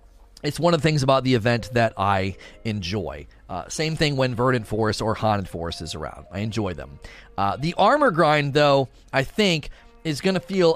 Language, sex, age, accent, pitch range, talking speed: English, male, 30-49, American, 115-155 Hz, 200 wpm